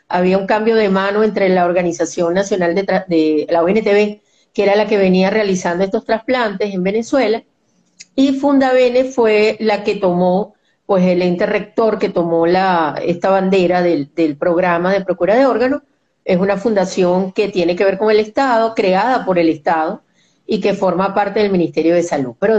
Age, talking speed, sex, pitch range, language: 40-59, 180 wpm, female, 180-220 Hz, Spanish